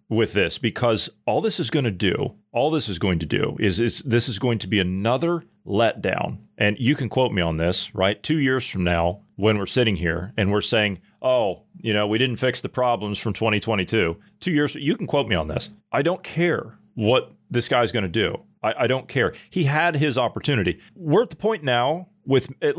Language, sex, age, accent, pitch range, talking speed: English, male, 40-59, American, 105-150 Hz, 220 wpm